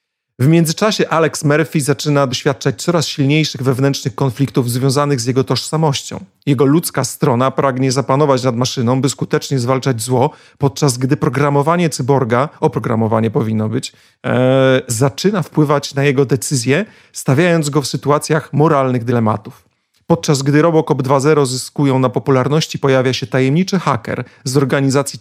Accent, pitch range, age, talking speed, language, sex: native, 130-155 Hz, 40-59, 135 wpm, Polish, male